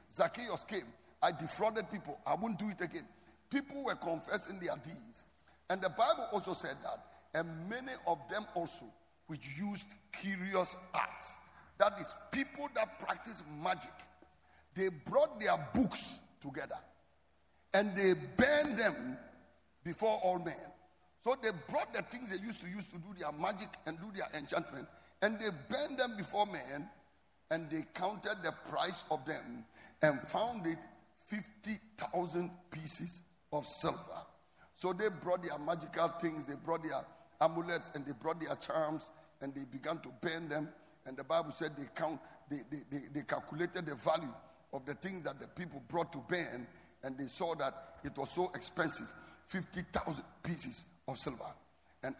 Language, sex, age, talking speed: English, male, 50-69, 165 wpm